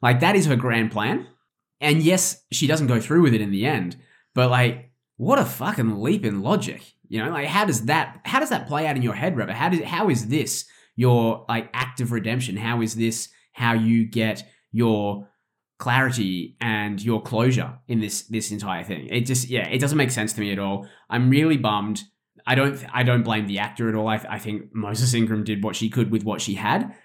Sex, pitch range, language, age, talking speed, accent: male, 105-125 Hz, English, 20-39, 230 wpm, Australian